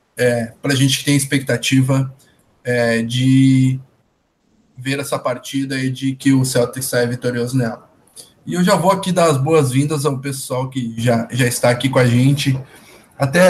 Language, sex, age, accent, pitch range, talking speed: Portuguese, male, 20-39, Brazilian, 125-145 Hz, 165 wpm